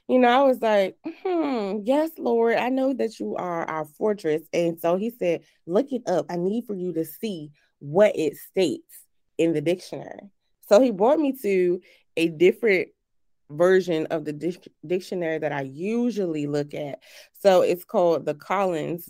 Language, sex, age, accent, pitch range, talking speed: English, female, 20-39, American, 160-225 Hz, 175 wpm